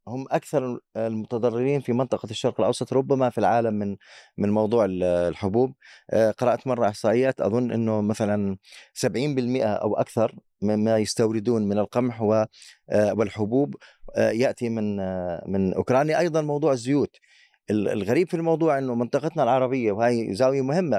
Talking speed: 125 wpm